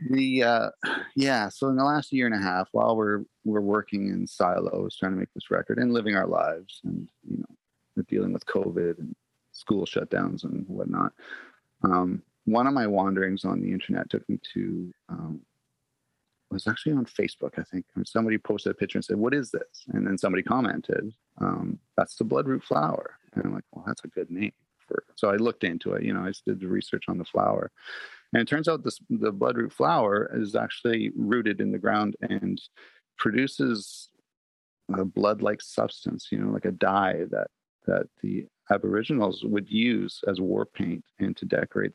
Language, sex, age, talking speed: English, male, 30-49, 185 wpm